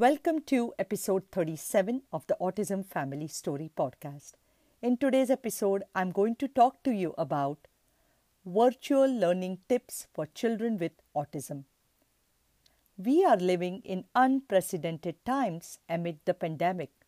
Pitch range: 170-240 Hz